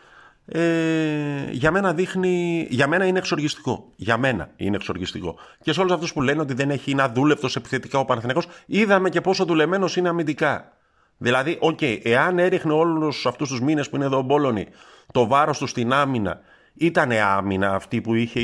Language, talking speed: Greek, 180 wpm